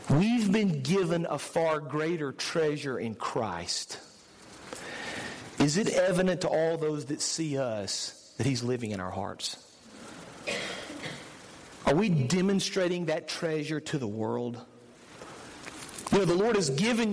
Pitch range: 140-205 Hz